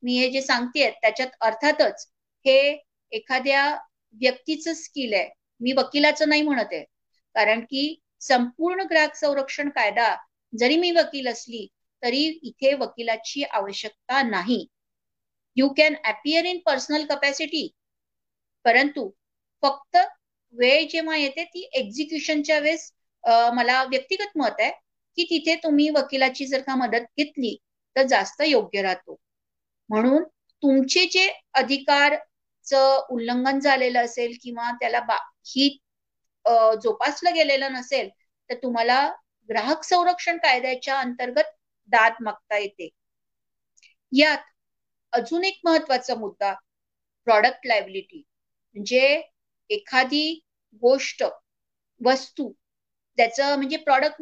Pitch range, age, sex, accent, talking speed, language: 245-310 Hz, 50-69, female, native, 105 wpm, Marathi